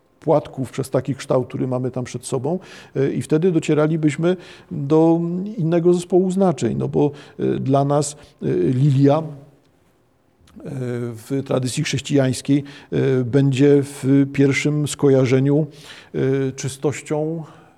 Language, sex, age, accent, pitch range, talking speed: Polish, male, 50-69, native, 135-160 Hz, 100 wpm